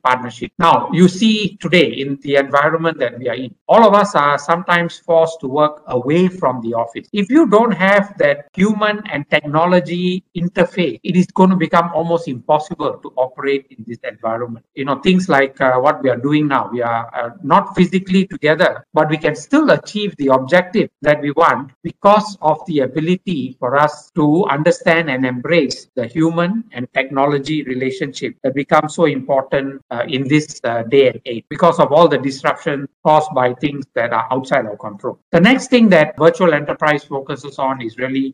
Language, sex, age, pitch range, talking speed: English, male, 60-79, 135-180 Hz, 190 wpm